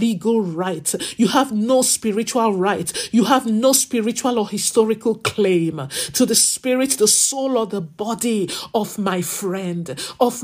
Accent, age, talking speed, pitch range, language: Nigerian, 50-69, 150 wpm, 195-240 Hz, English